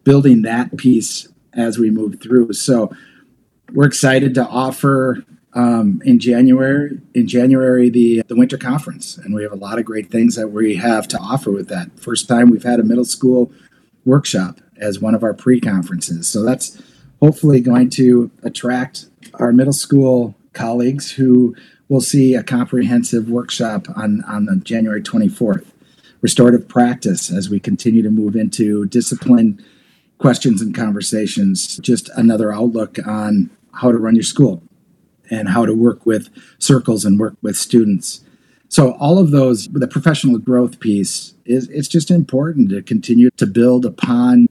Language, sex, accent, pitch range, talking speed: English, male, American, 115-140 Hz, 160 wpm